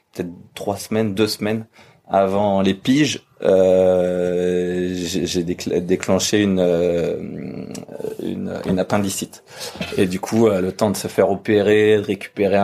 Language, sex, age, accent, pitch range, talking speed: French, male, 30-49, French, 90-105 Hz, 135 wpm